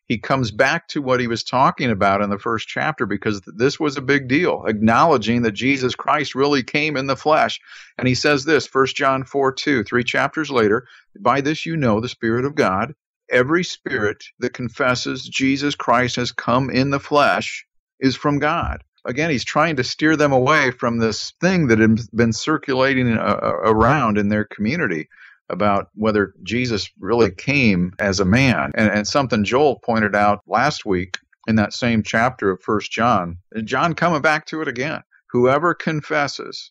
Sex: male